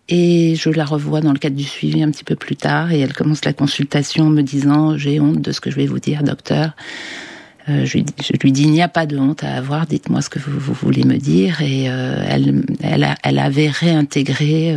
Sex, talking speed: female, 250 wpm